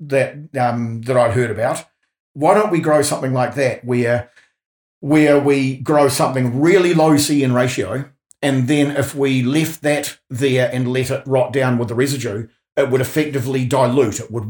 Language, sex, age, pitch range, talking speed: English, male, 50-69, 120-145 Hz, 180 wpm